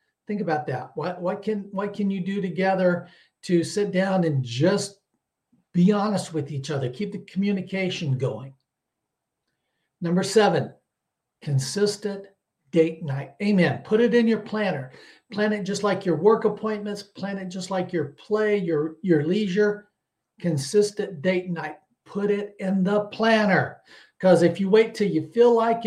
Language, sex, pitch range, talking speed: English, male, 170-210 Hz, 155 wpm